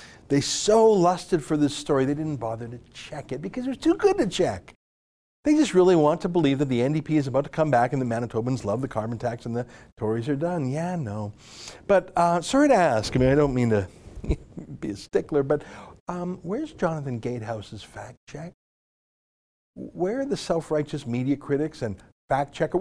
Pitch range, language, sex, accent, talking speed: 125-175 Hz, English, male, American, 205 wpm